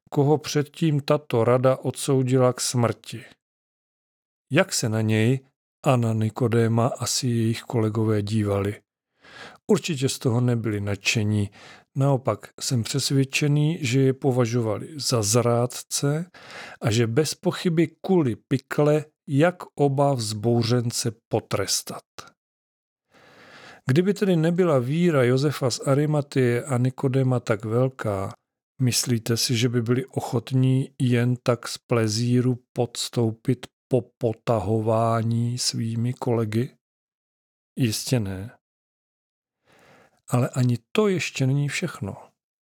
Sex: male